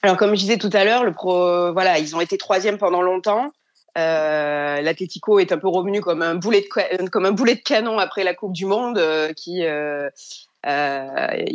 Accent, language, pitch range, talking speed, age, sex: French, French, 170-205 Hz, 215 wpm, 30-49, female